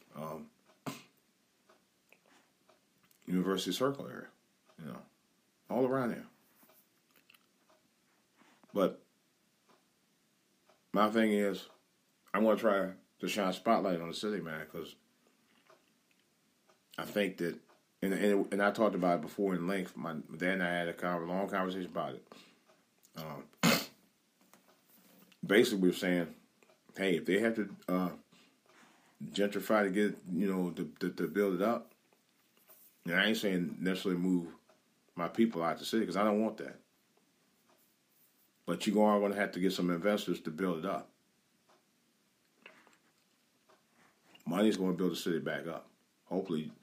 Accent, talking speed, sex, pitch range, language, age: American, 140 wpm, male, 90-105 Hz, English, 40-59